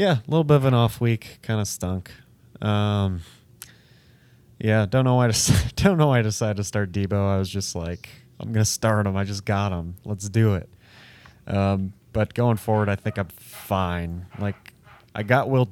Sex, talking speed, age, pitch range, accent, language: male, 200 wpm, 20-39, 100-125 Hz, American, English